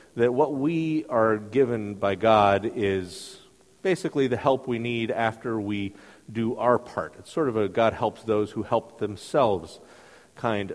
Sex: male